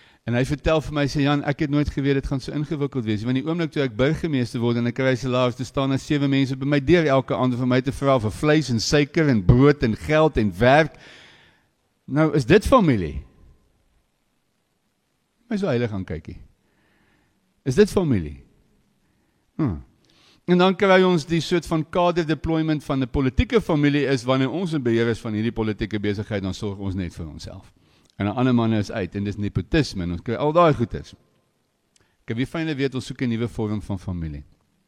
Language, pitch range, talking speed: English, 105-150 Hz, 205 wpm